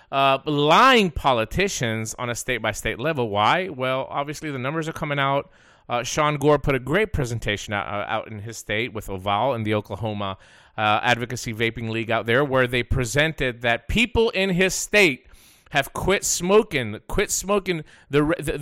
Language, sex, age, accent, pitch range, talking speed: English, male, 30-49, American, 115-175 Hz, 170 wpm